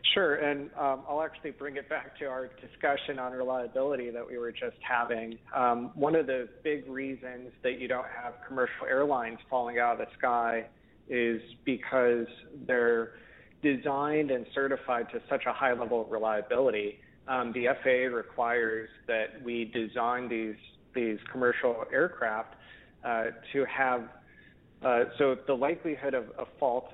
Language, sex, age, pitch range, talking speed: English, male, 30-49, 115-130 Hz, 155 wpm